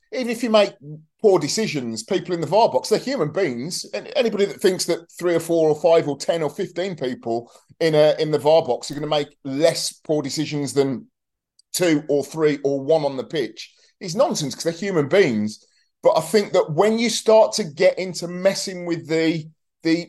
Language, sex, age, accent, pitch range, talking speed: English, male, 30-49, British, 145-180 Hz, 210 wpm